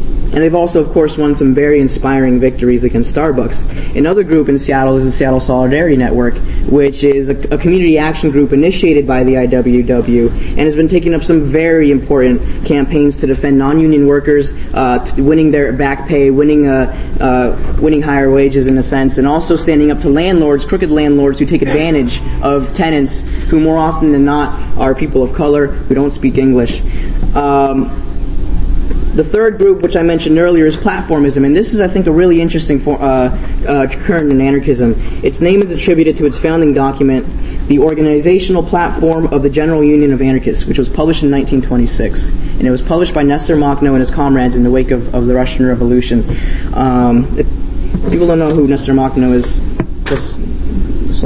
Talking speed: 185 wpm